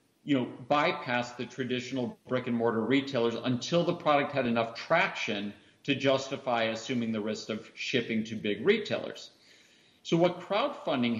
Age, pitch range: 50-69, 115-145 Hz